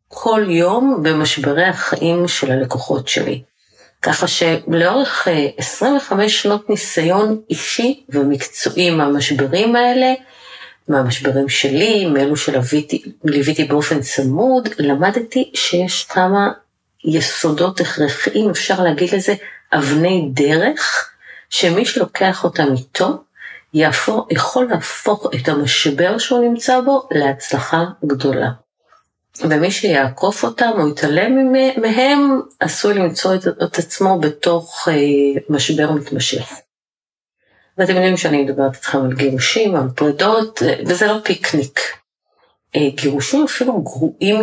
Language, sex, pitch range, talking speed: Hebrew, female, 145-215 Hz, 100 wpm